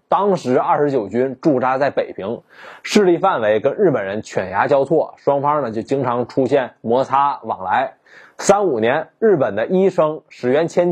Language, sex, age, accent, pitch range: Chinese, male, 20-39, native, 135-180 Hz